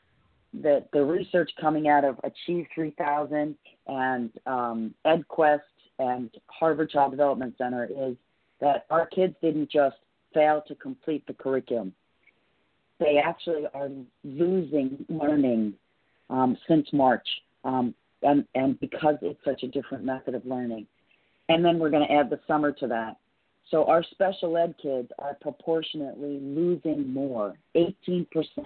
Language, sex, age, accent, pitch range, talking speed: English, female, 40-59, American, 130-160 Hz, 135 wpm